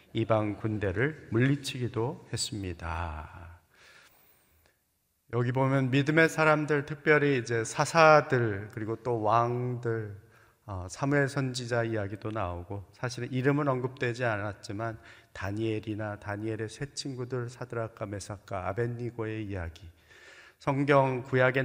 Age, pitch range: 40-59, 110-140 Hz